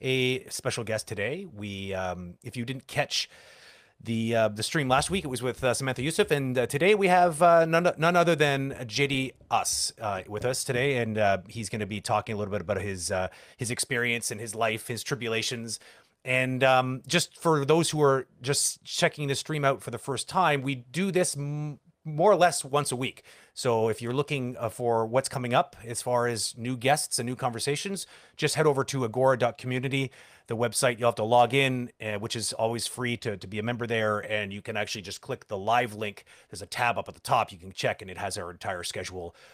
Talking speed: 225 wpm